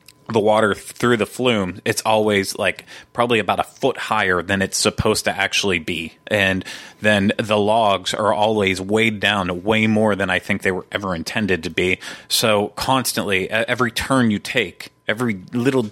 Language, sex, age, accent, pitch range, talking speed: English, male, 30-49, American, 100-115 Hz, 175 wpm